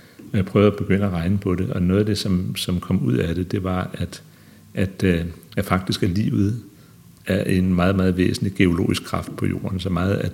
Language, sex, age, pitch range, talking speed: Danish, male, 60-79, 85-100 Hz, 220 wpm